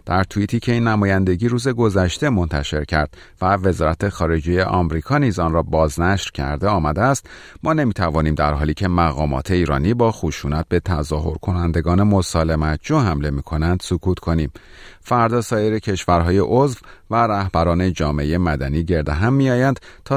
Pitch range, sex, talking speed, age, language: 80-110 Hz, male, 145 wpm, 40-59, Persian